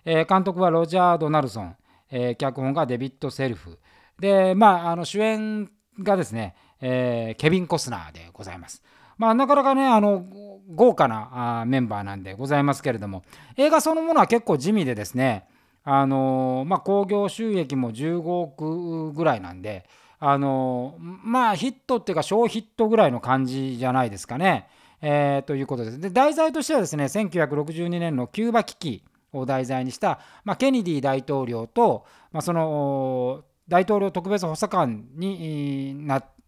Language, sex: Japanese, male